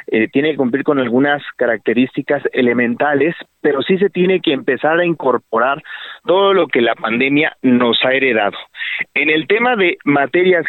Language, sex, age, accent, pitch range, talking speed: Spanish, male, 40-59, Mexican, 130-170 Hz, 165 wpm